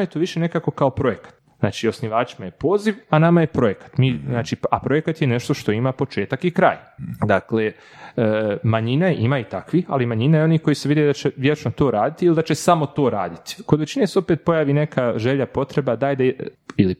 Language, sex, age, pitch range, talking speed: Croatian, male, 30-49, 110-150 Hz, 215 wpm